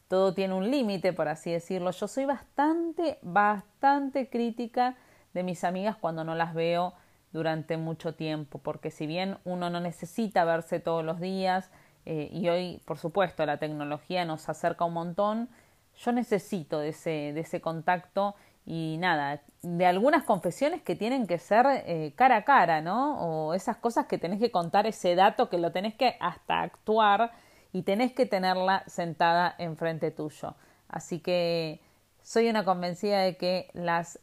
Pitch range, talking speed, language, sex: 160-215 Hz, 165 wpm, Spanish, female